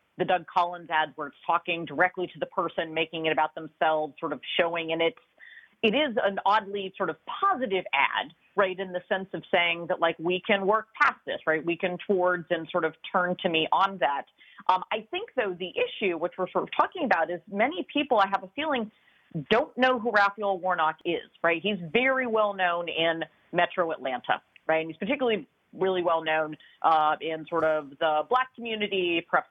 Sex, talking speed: female, 205 wpm